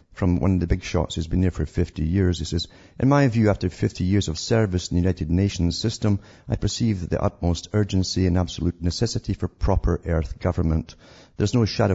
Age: 50-69